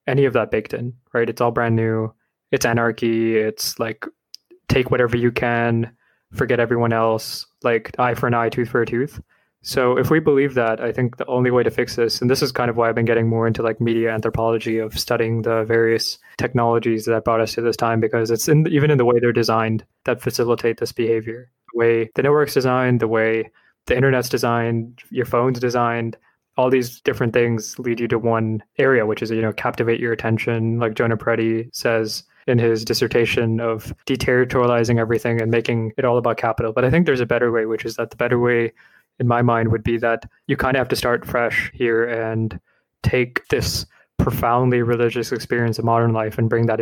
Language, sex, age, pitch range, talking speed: English, male, 20-39, 115-125 Hz, 210 wpm